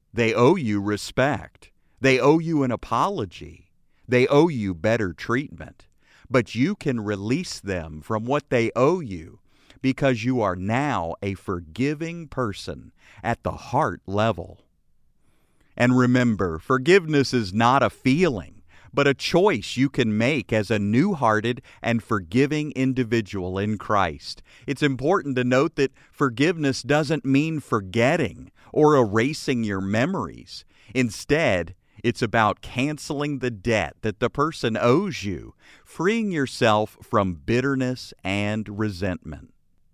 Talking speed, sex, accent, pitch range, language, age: 130 wpm, male, American, 105-140 Hz, English, 50-69